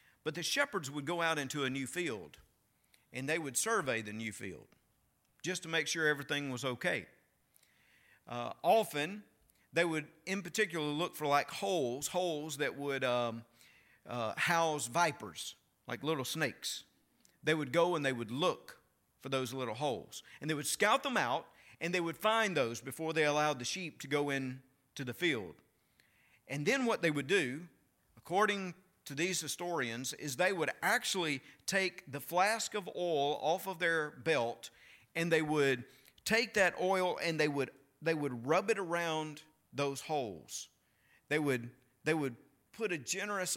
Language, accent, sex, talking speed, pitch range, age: English, American, male, 170 wpm, 140-185 Hz, 50-69